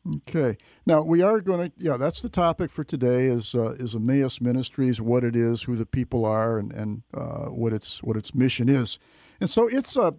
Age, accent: 50-69, American